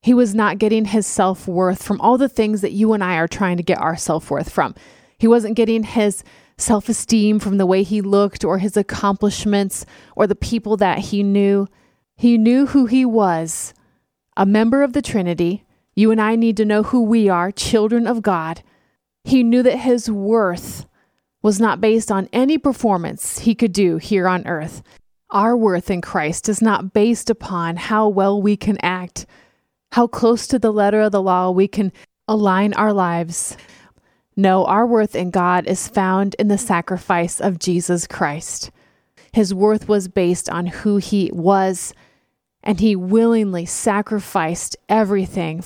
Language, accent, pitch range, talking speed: English, American, 185-225 Hz, 170 wpm